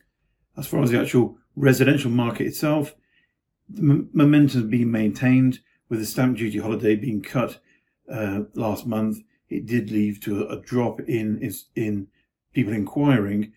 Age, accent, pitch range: 50-69, British, 105-130 Hz